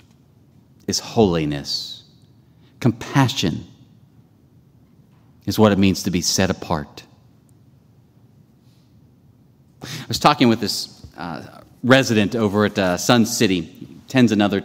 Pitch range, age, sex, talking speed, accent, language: 105-130 Hz, 30-49, male, 100 wpm, American, English